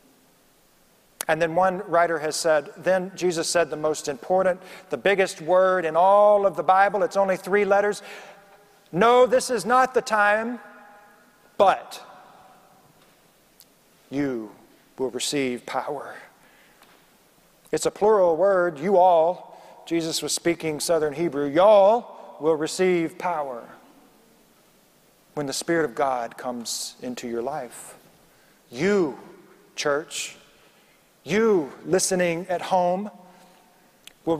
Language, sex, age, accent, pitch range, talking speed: English, male, 40-59, American, 145-190 Hz, 115 wpm